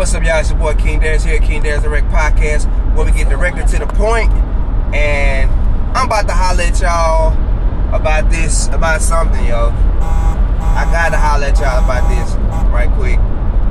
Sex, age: male, 20-39